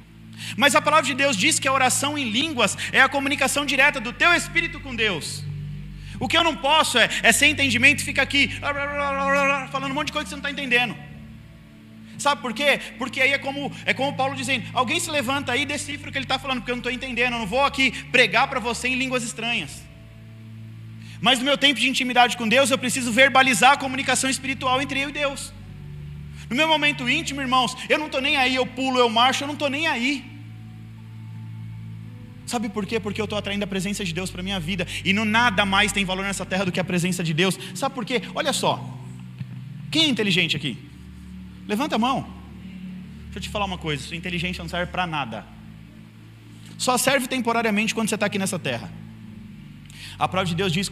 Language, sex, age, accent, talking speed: Portuguese, male, 30-49, Brazilian, 220 wpm